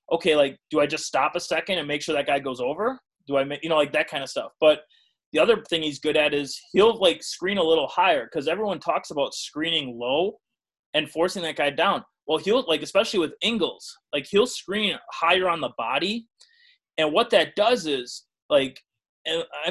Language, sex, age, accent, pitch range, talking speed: English, male, 20-39, American, 150-195 Hz, 215 wpm